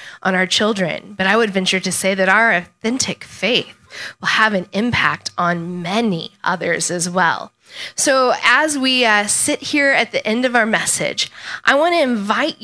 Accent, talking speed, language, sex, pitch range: American, 180 wpm, English, female, 190-260 Hz